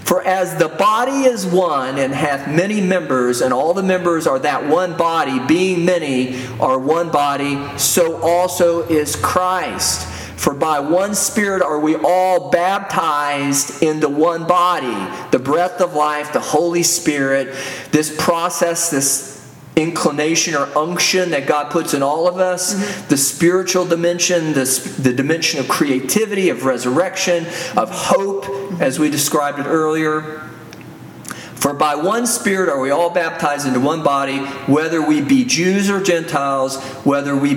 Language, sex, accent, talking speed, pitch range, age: English, male, American, 150 wpm, 145-185 Hz, 40-59